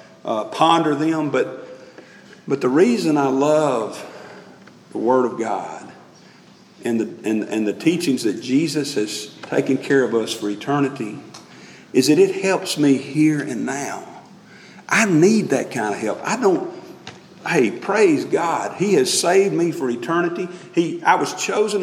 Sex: male